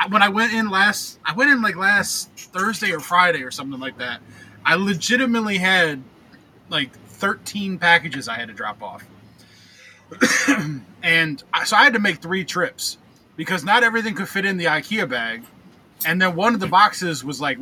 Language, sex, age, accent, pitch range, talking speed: English, male, 20-39, American, 155-200 Hz, 180 wpm